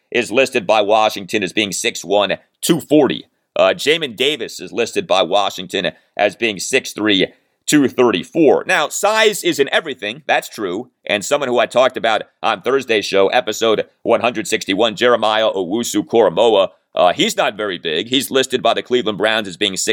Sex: male